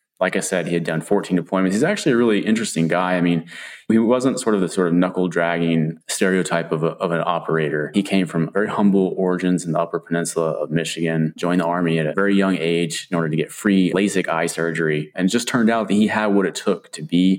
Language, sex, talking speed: English, male, 240 wpm